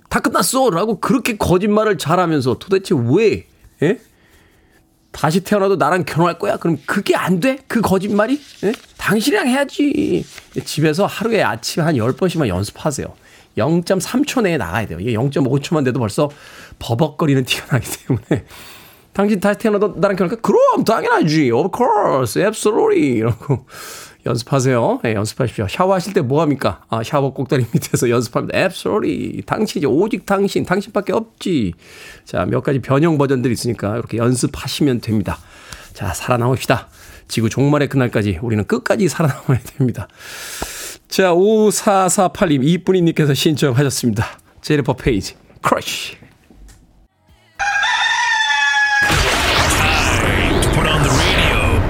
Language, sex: Korean, male